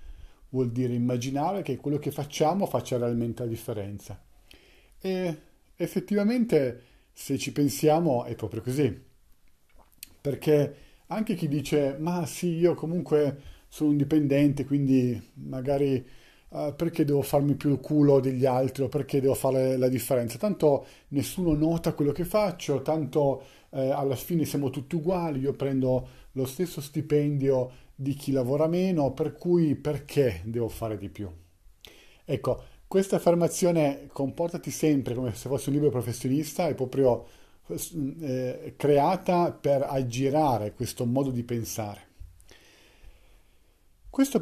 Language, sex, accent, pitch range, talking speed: Italian, male, native, 120-155 Hz, 130 wpm